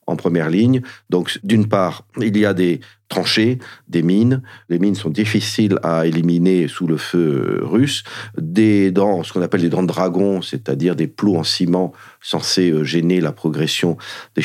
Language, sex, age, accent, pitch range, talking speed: French, male, 40-59, French, 80-105 Hz, 175 wpm